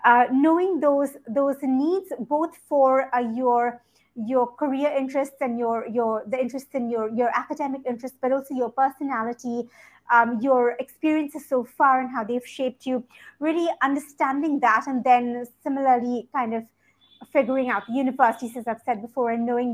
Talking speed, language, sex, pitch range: 160 wpm, English, female, 235-275 Hz